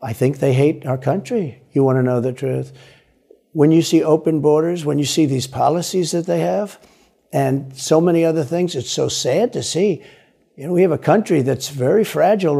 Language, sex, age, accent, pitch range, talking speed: English, male, 60-79, American, 135-175 Hz, 210 wpm